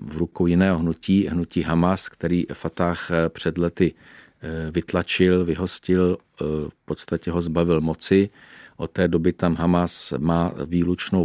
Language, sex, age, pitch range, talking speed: Czech, male, 40-59, 85-90 Hz, 130 wpm